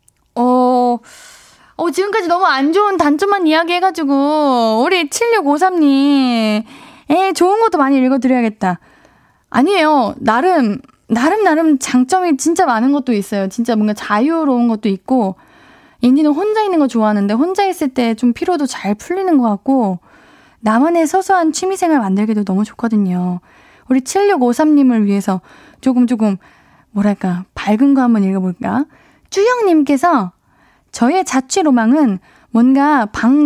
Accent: native